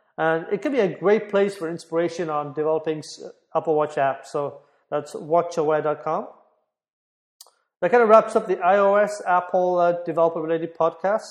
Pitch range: 160-195 Hz